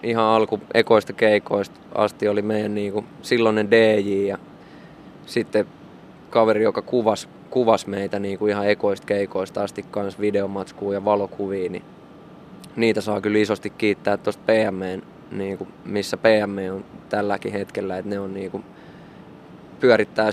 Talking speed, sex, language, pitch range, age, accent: 135 wpm, male, Finnish, 100-110 Hz, 20-39, native